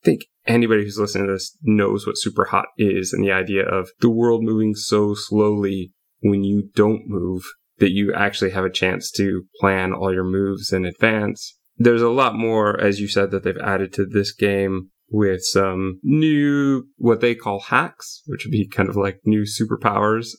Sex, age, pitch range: male, 20-39, 95-110 Hz